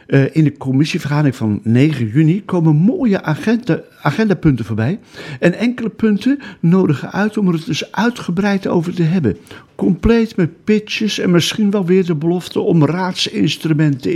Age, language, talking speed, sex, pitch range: 50-69, Dutch, 155 wpm, male, 135-180 Hz